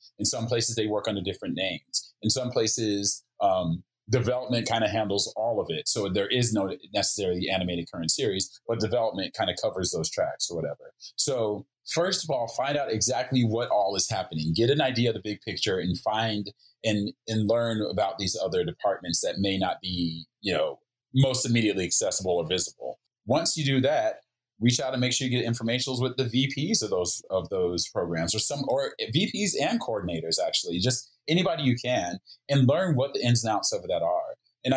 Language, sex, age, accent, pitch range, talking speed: English, male, 30-49, American, 105-130 Hz, 200 wpm